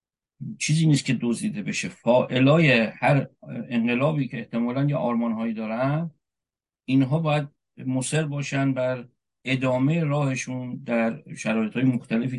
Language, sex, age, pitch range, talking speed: Persian, male, 50-69, 120-150 Hz, 120 wpm